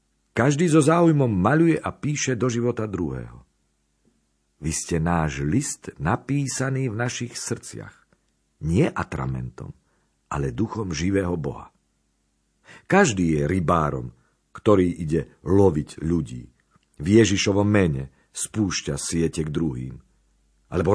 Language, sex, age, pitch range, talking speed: Slovak, male, 50-69, 70-115 Hz, 110 wpm